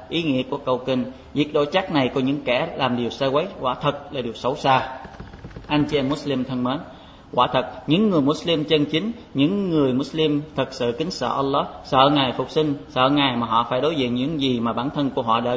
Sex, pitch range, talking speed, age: male, 130-155 Hz, 240 wpm, 20-39